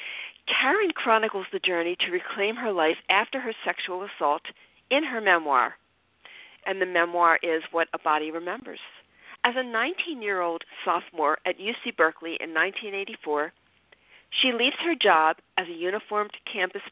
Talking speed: 140 wpm